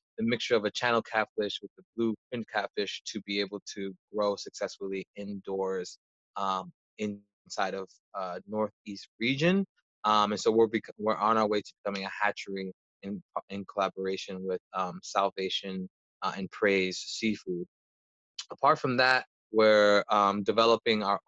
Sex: male